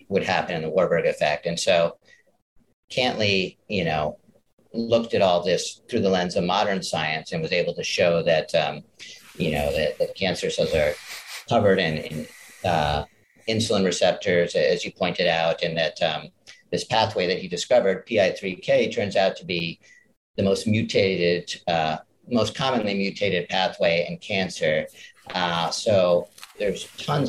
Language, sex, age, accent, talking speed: English, male, 50-69, American, 160 wpm